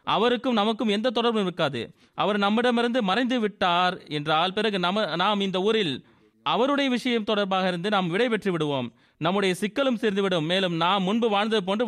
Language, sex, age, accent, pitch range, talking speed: Tamil, male, 30-49, native, 160-225 Hz, 150 wpm